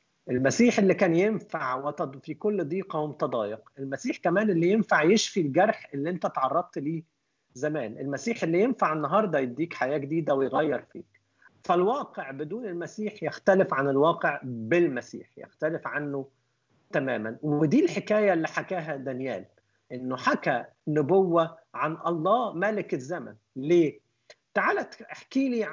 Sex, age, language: male, 50-69, Arabic